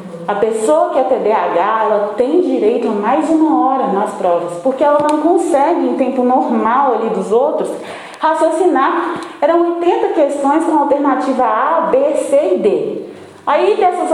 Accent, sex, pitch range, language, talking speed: Brazilian, female, 220-320 Hz, Portuguese, 160 wpm